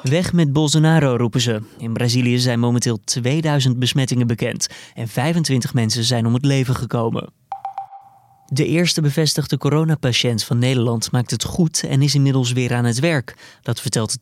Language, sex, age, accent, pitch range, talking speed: Dutch, male, 20-39, Dutch, 120-140 Hz, 165 wpm